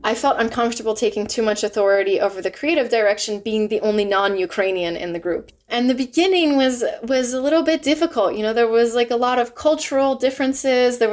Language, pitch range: English, 195-250 Hz